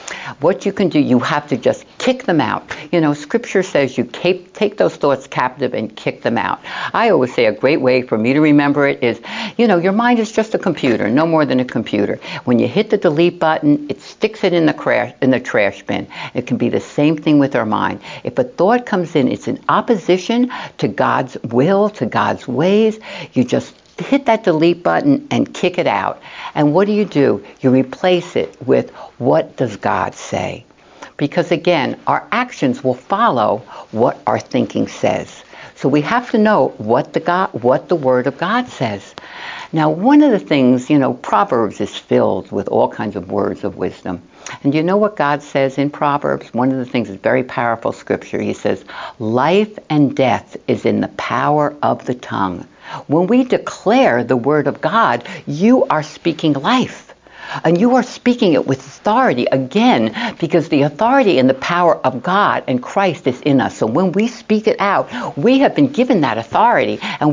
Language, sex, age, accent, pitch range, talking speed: English, female, 60-79, American, 135-215 Hz, 200 wpm